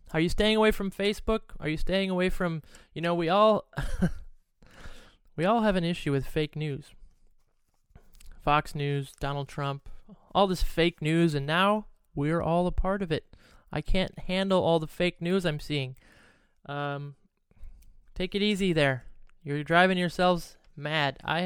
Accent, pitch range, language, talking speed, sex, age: American, 145-175 Hz, English, 160 wpm, male, 20-39